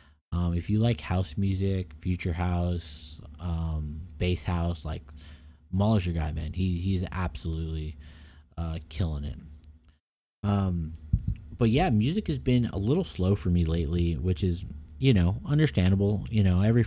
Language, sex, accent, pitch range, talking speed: English, male, American, 80-100 Hz, 150 wpm